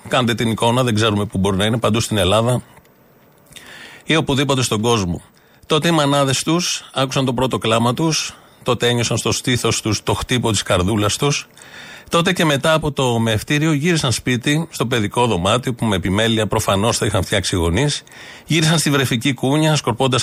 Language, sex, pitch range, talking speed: Greek, male, 110-140 Hz, 175 wpm